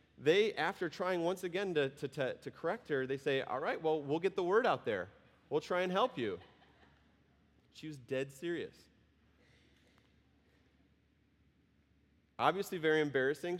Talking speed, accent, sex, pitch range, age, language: 140 wpm, American, male, 120-160 Hz, 30-49, English